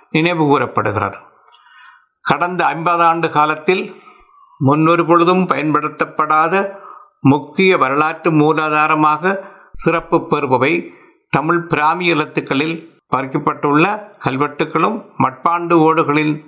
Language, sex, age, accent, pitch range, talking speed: Tamil, male, 60-79, native, 145-170 Hz, 75 wpm